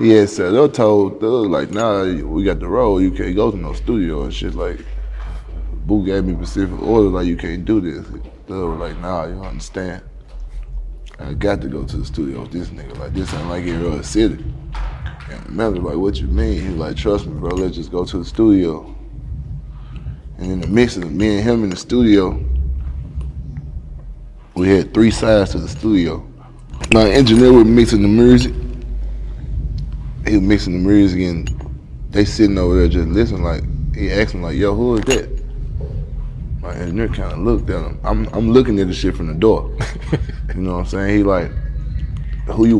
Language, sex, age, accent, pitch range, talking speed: English, male, 20-39, American, 85-115 Hz, 200 wpm